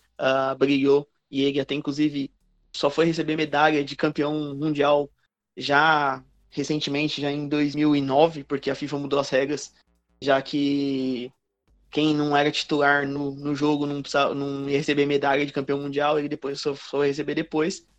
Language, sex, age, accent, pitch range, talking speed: Portuguese, male, 20-39, Brazilian, 140-155 Hz, 145 wpm